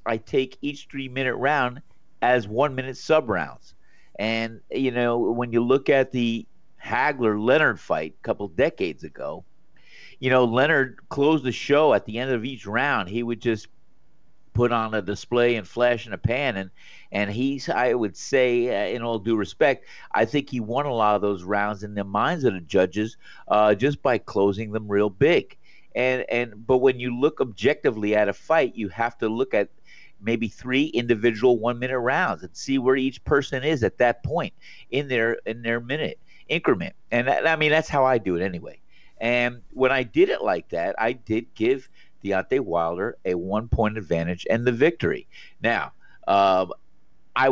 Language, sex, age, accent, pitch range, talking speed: English, male, 50-69, American, 110-135 Hz, 180 wpm